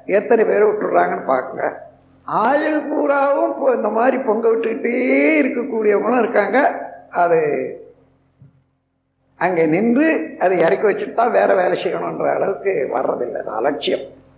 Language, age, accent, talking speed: Tamil, 60-79, native, 110 wpm